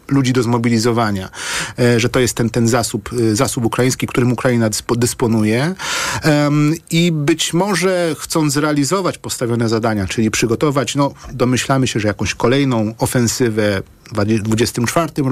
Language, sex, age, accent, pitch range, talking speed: Polish, male, 40-59, native, 115-140 Hz, 135 wpm